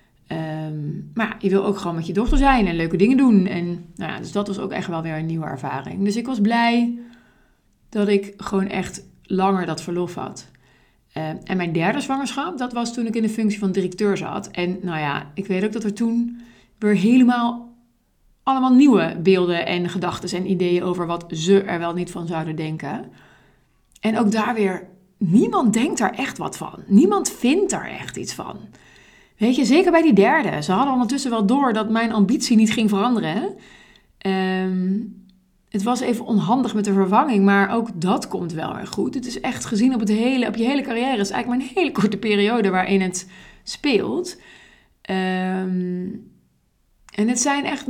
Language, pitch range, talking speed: Dutch, 185-240 Hz, 190 wpm